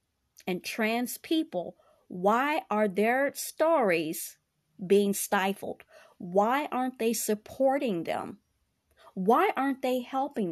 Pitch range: 210-295 Hz